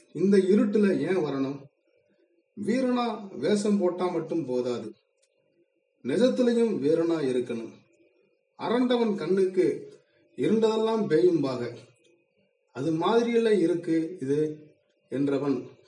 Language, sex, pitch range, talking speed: Tamil, male, 155-235 Hz, 80 wpm